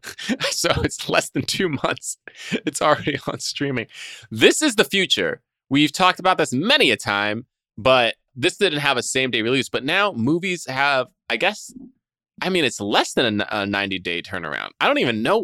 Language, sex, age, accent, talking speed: English, male, 20-39, American, 185 wpm